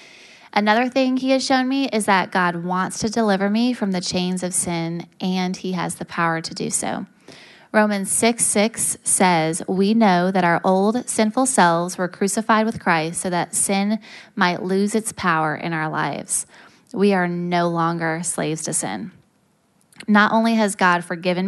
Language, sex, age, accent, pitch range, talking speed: English, female, 20-39, American, 175-210 Hz, 175 wpm